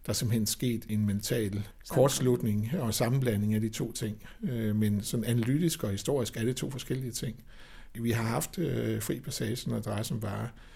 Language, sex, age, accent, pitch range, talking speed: Danish, male, 60-79, native, 105-120 Hz, 175 wpm